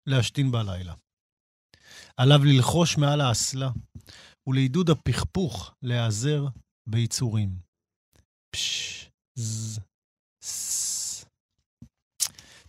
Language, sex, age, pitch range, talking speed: Hebrew, male, 40-59, 115-150 Hz, 50 wpm